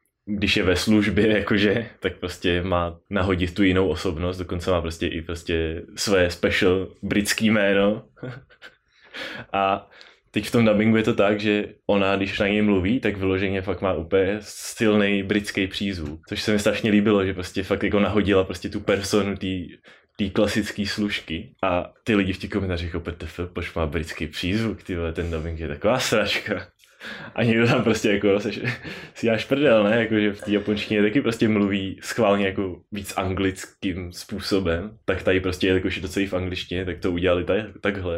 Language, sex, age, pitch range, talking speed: Czech, male, 20-39, 85-105 Hz, 180 wpm